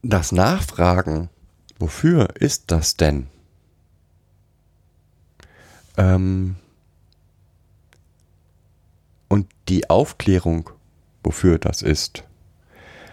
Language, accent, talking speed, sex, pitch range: German, German, 60 wpm, male, 85-100 Hz